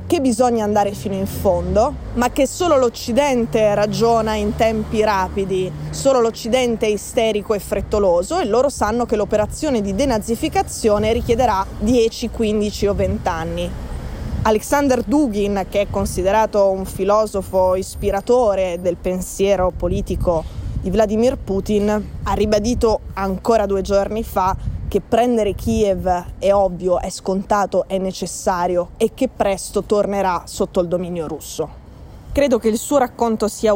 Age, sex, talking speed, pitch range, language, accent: 20-39, female, 135 wpm, 190-225 Hz, Italian, native